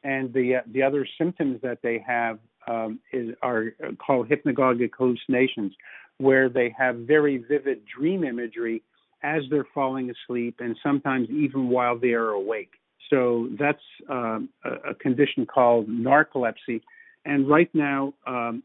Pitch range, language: 120-140 Hz, English